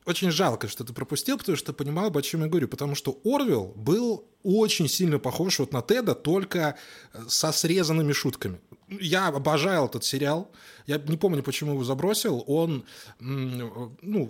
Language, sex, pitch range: Russian, male, 115-180 Hz